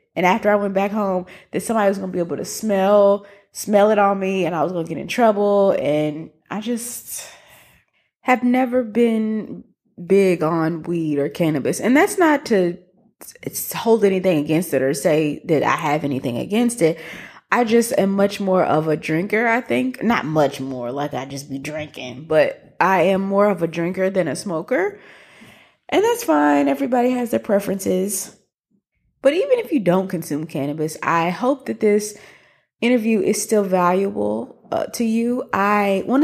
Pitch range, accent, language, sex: 155-210 Hz, American, English, female